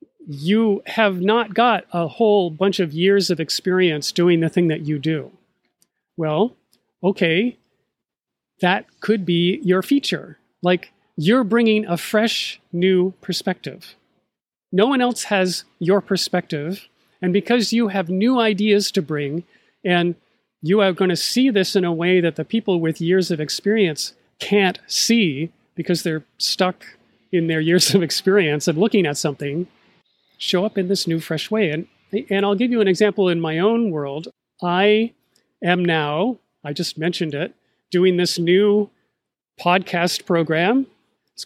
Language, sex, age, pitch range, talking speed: English, male, 40-59, 170-205 Hz, 155 wpm